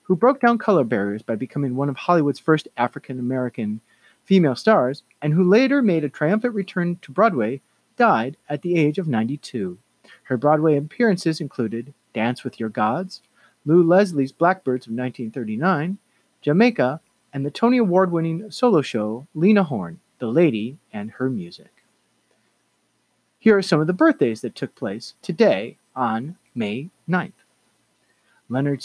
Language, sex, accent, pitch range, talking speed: English, male, American, 130-205 Hz, 145 wpm